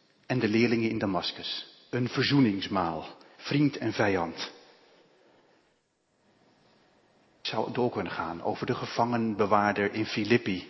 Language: Dutch